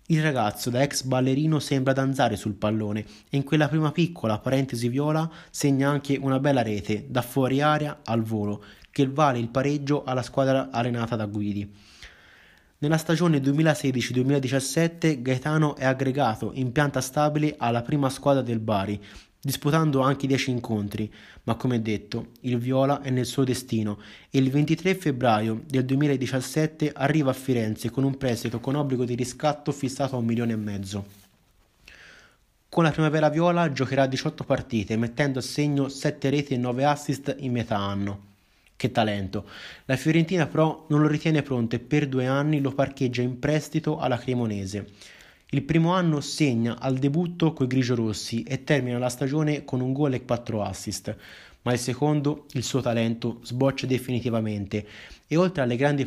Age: 20-39